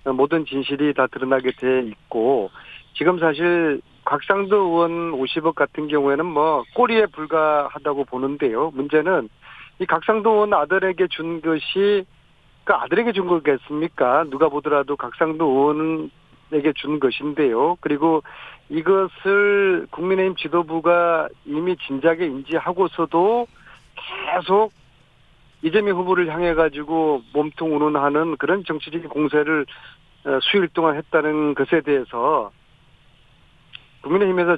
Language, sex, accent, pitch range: Korean, male, native, 140-175 Hz